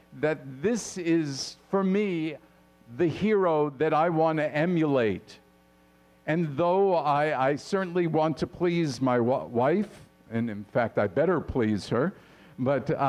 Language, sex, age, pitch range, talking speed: English, male, 50-69, 110-175 Hz, 140 wpm